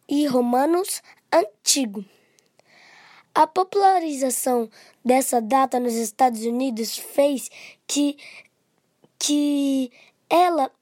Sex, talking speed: female, 80 wpm